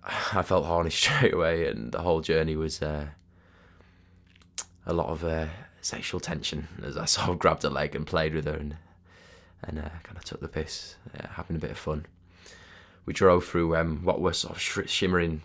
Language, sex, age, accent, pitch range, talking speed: English, male, 20-39, British, 80-90 Hz, 200 wpm